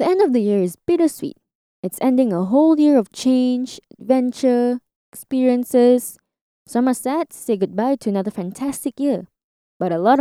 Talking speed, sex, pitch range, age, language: 170 wpm, female, 205-290 Hz, 10-29, English